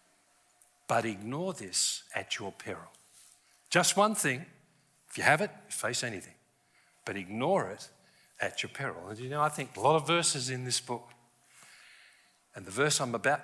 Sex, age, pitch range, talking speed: male, 50-69, 125-180 Hz, 170 wpm